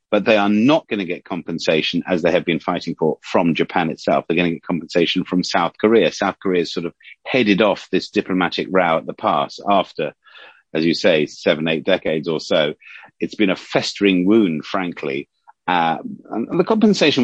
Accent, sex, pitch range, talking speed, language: British, male, 85-115 Hz, 200 wpm, English